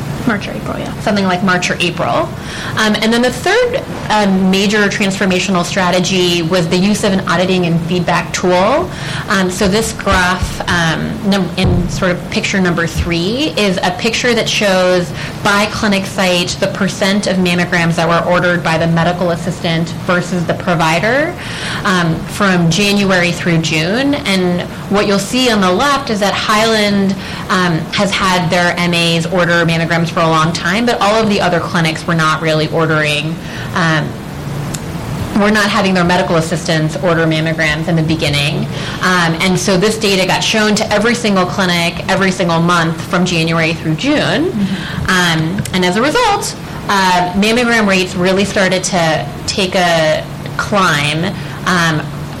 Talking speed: 160 wpm